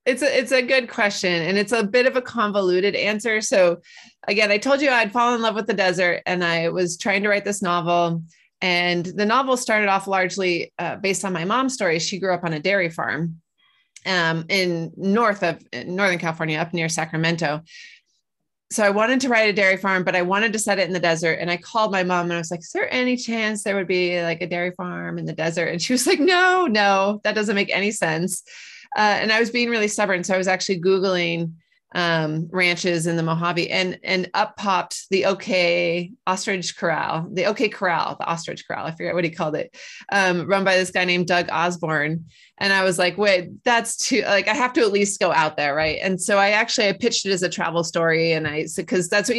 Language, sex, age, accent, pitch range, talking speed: English, female, 30-49, American, 170-210 Hz, 230 wpm